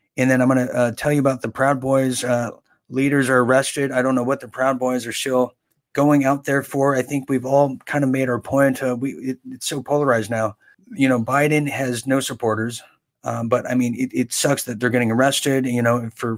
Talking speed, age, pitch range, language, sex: 225 wpm, 30-49, 125-140 Hz, English, male